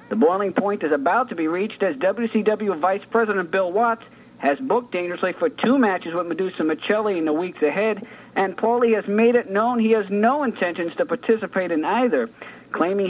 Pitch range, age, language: 175-235 Hz, 50-69, English